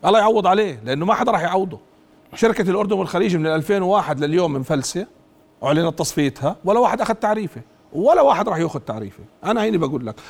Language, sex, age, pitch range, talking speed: Arabic, male, 40-59, 140-195 Hz, 180 wpm